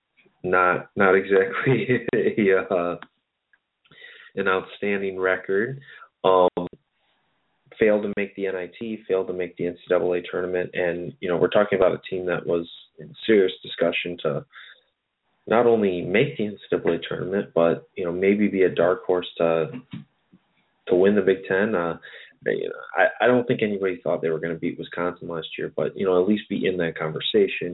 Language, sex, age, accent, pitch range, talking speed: English, male, 20-39, American, 85-100 Hz, 170 wpm